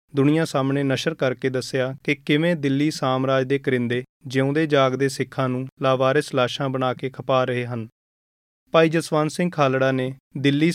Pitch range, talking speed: 130-150 Hz, 155 wpm